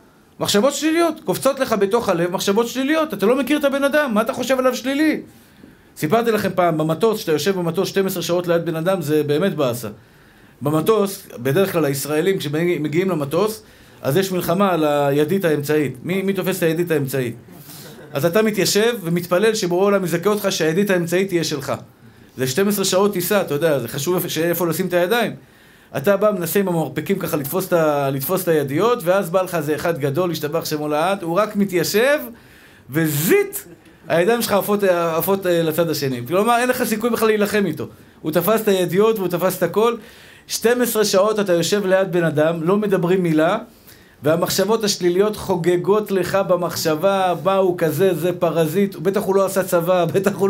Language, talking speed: Hebrew, 175 wpm